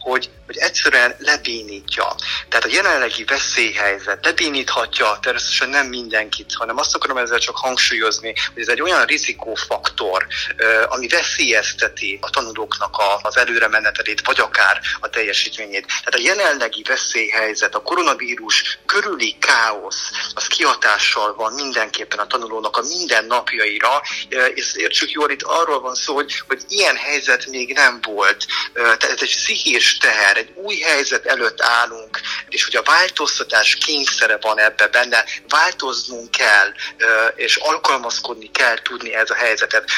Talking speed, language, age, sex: 135 wpm, Hungarian, 30-49, male